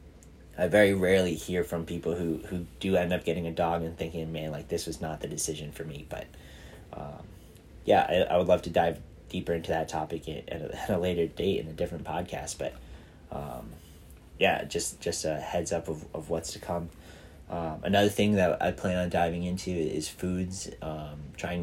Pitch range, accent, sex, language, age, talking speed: 80-95 Hz, American, male, English, 30-49, 205 wpm